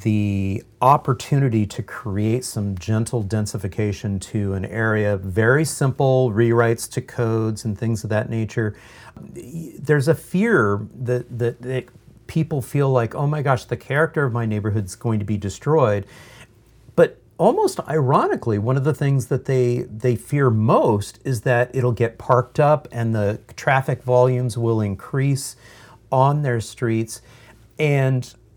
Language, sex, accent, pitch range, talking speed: English, male, American, 110-150 Hz, 145 wpm